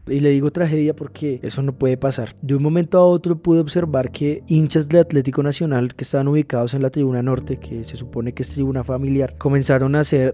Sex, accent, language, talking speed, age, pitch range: male, Colombian, Spanish, 220 wpm, 20-39, 130-150 Hz